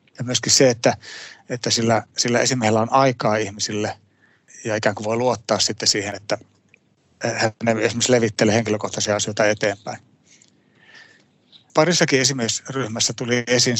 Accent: native